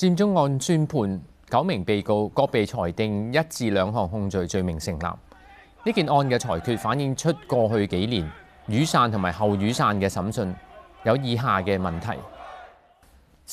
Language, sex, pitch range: Chinese, male, 100-155 Hz